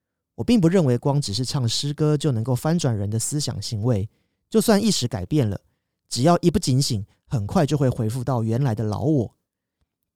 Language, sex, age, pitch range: Chinese, male, 30-49, 120-150 Hz